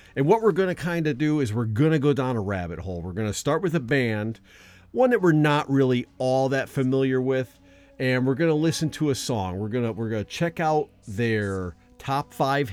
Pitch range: 110-140 Hz